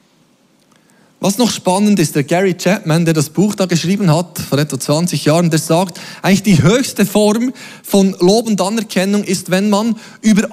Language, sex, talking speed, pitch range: German, male, 175 wpm, 180-235 Hz